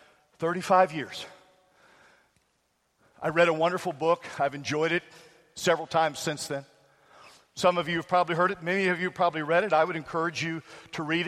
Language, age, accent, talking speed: English, 50-69, American, 180 wpm